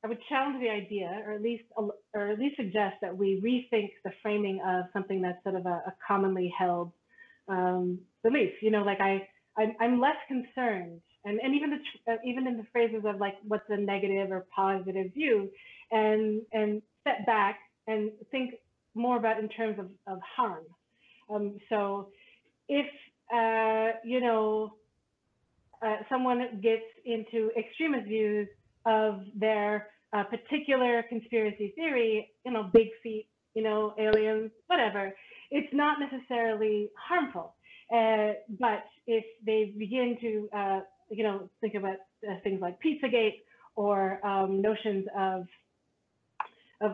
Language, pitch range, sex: English, 200-230 Hz, female